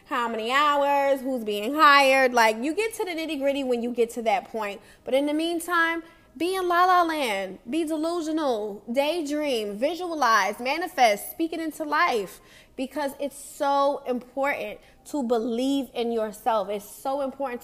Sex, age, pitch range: female, 20-39, 230-290 Hz